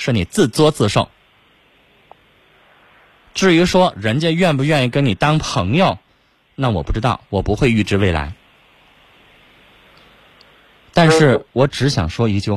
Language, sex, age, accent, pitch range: Chinese, male, 20-39, native, 110-165 Hz